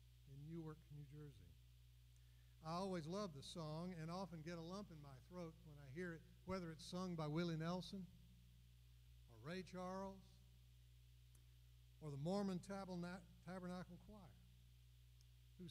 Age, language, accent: 60-79, English, American